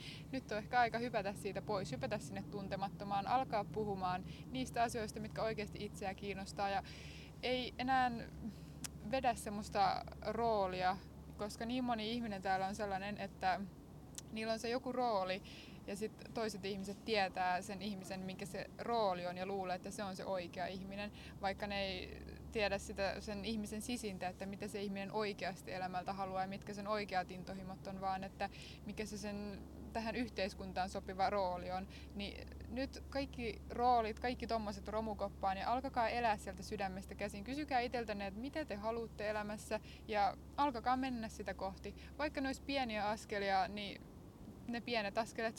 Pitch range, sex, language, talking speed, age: 195-225 Hz, female, Finnish, 160 wpm, 20-39